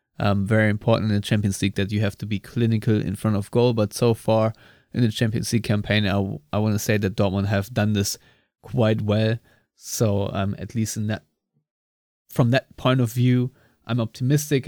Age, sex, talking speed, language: 20-39, male, 210 wpm, English